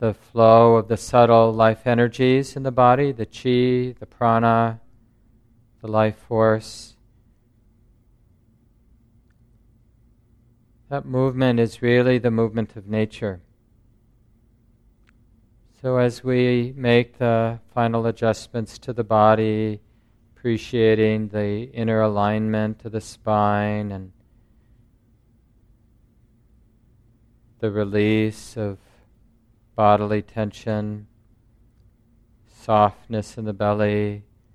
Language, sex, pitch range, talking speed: English, male, 110-115 Hz, 90 wpm